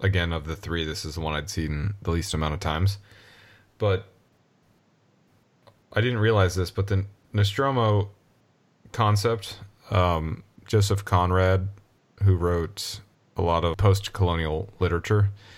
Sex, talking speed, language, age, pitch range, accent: male, 130 wpm, English, 30-49, 85-100 Hz, American